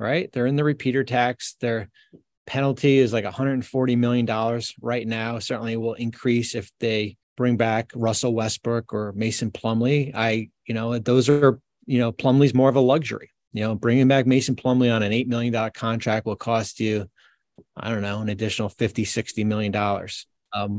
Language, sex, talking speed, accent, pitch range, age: English, male, 175 wpm, American, 115-135 Hz, 30-49